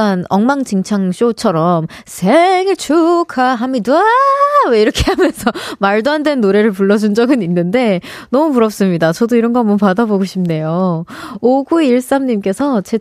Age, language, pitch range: 20-39, Korean, 195-280 Hz